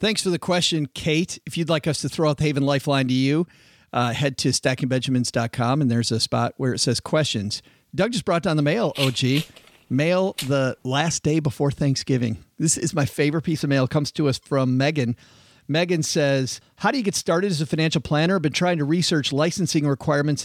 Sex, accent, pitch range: male, American, 135-160 Hz